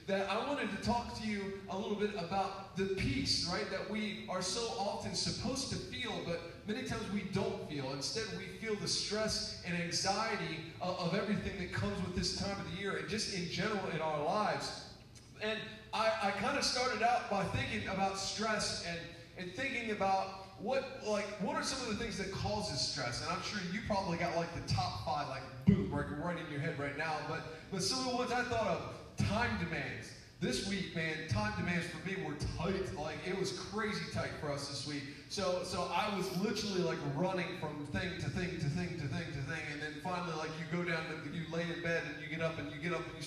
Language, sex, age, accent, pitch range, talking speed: English, male, 30-49, American, 160-205 Hz, 225 wpm